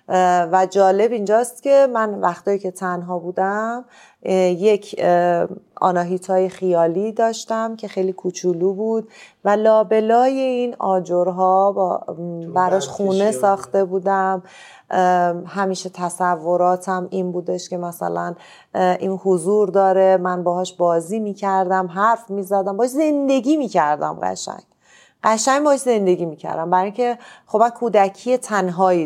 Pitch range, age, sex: 175-200 Hz, 30-49, female